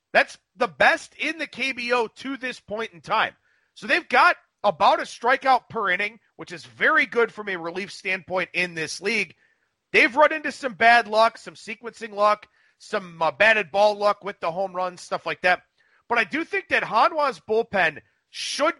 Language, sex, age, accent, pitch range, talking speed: English, male, 40-59, American, 190-265 Hz, 185 wpm